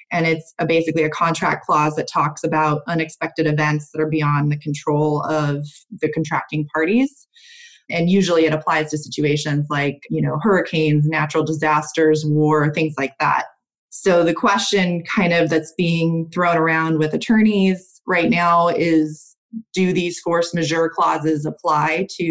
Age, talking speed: 20-39, 155 wpm